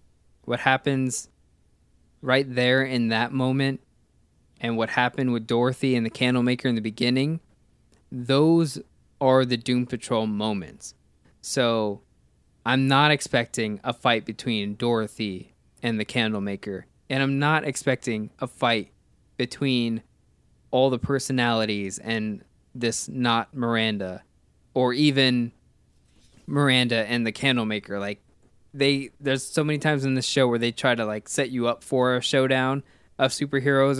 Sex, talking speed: male, 135 wpm